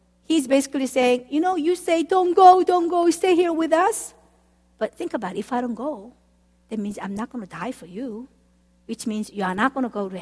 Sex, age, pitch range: female, 50-69, 210-290 Hz